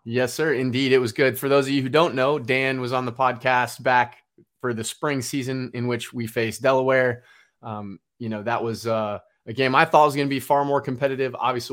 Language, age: English, 30-49